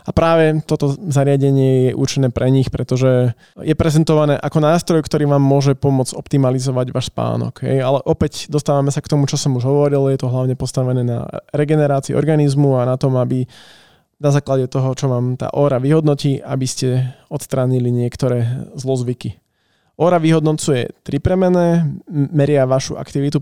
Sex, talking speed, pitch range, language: male, 155 wpm, 130-145 Hz, Slovak